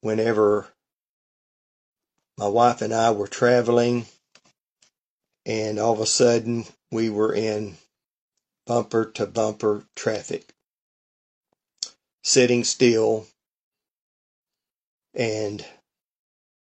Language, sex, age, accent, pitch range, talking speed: English, male, 40-59, American, 105-120 Hz, 80 wpm